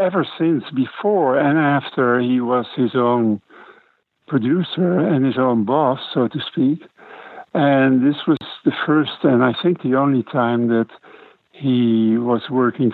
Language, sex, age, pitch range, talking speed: English, male, 60-79, 115-140 Hz, 150 wpm